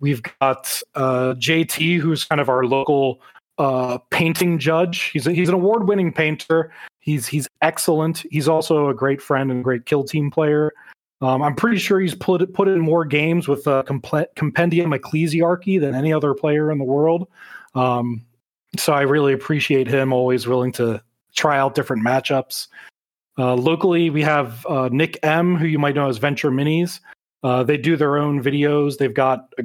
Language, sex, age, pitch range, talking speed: English, male, 30-49, 130-160 Hz, 180 wpm